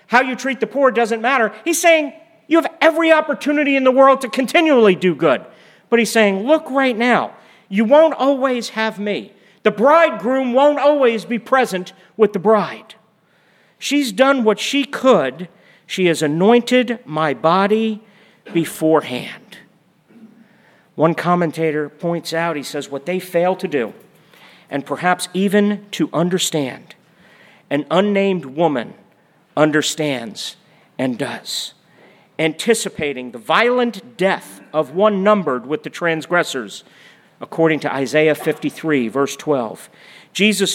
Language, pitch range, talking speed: English, 160-225 Hz, 135 wpm